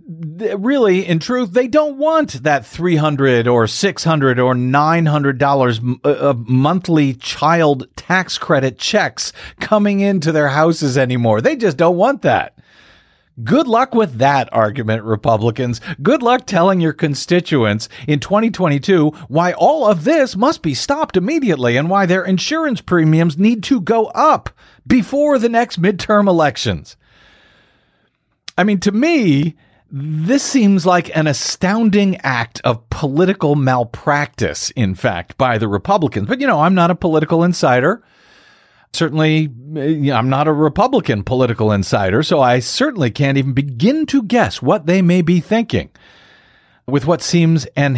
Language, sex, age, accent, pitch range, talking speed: English, male, 50-69, American, 135-195 Hz, 140 wpm